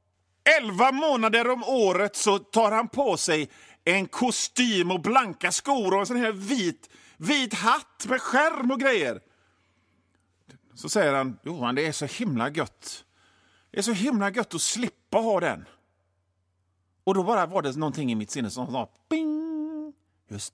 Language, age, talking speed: Swedish, 40-59, 165 wpm